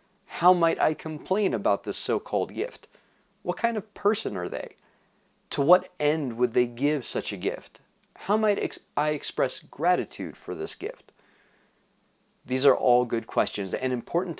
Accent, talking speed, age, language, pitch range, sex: American, 160 wpm, 40-59, English, 120-180 Hz, male